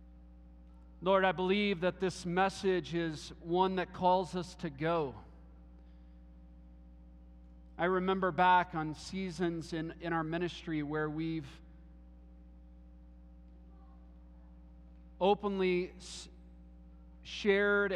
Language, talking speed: English, 85 wpm